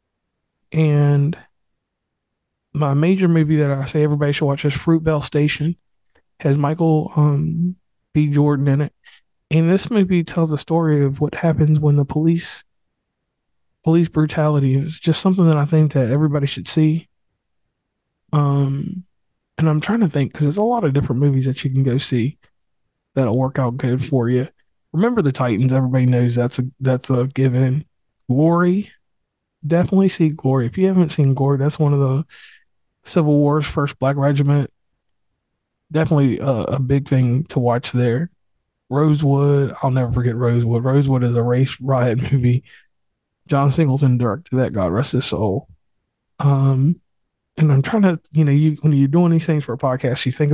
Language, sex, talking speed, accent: English, male, 170 wpm, American